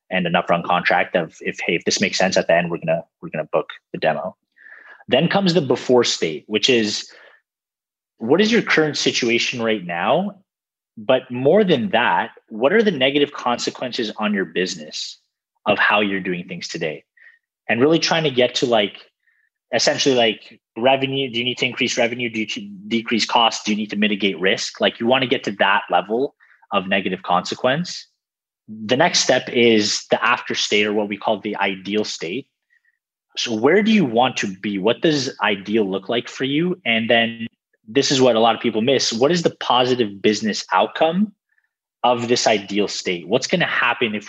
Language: English